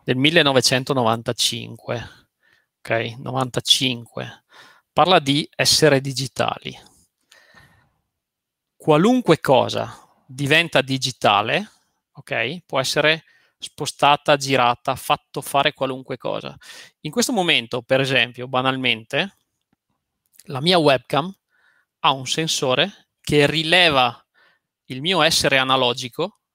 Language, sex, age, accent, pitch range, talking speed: Italian, male, 30-49, native, 130-180 Hz, 80 wpm